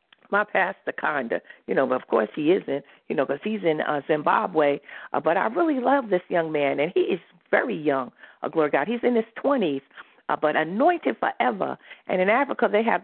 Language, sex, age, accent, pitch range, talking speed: English, female, 50-69, American, 180-275 Hz, 215 wpm